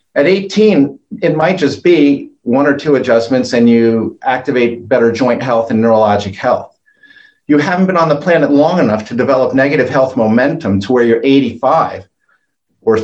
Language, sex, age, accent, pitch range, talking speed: English, male, 50-69, American, 115-160 Hz, 170 wpm